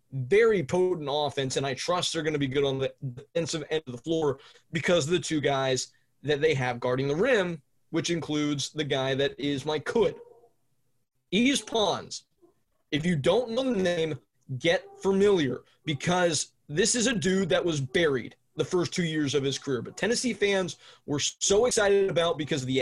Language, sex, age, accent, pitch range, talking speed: English, male, 20-39, American, 140-185 Hz, 190 wpm